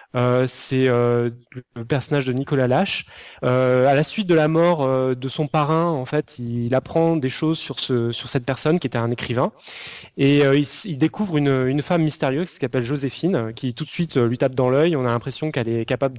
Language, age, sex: French, 20-39, male